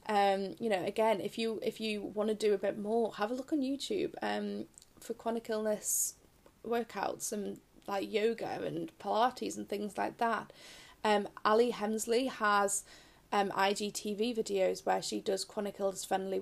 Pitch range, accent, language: 195-225 Hz, British, English